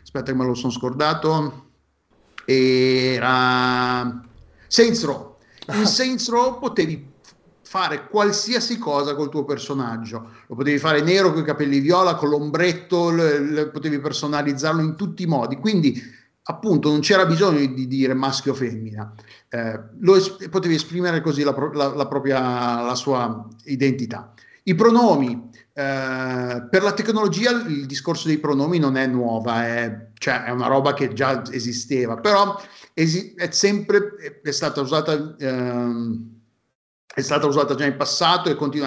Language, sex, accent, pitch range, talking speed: Italian, male, native, 130-175 Hz, 155 wpm